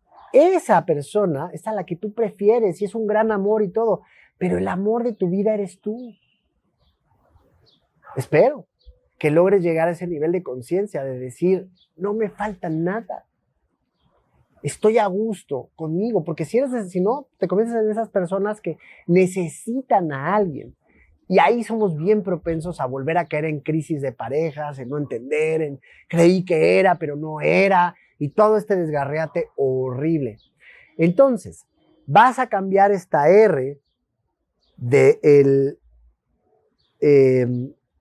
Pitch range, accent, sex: 155-210 Hz, Mexican, male